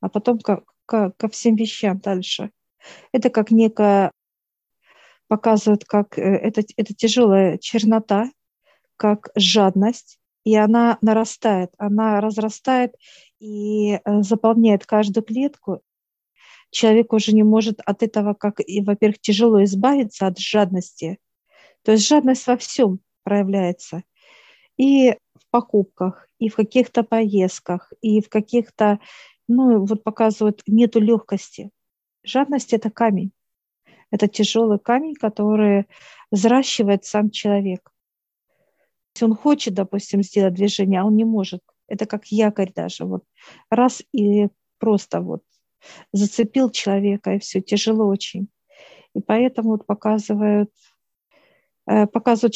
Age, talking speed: 40-59, 115 wpm